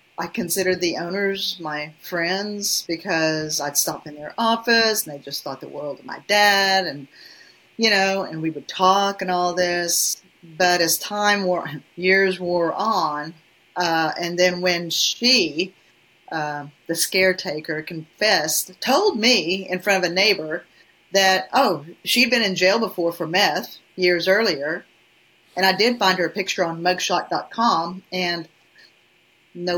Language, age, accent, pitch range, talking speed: English, 40-59, American, 170-230 Hz, 155 wpm